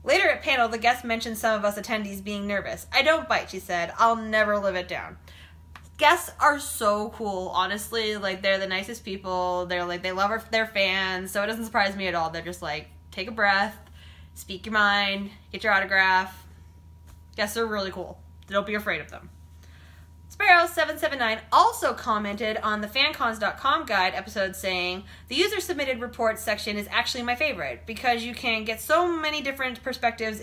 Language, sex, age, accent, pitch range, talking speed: English, female, 20-39, American, 170-230 Hz, 180 wpm